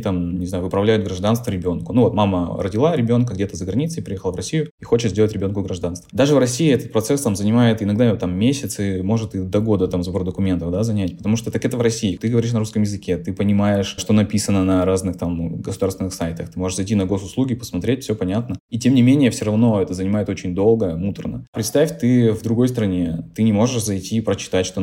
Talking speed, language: 220 wpm, Russian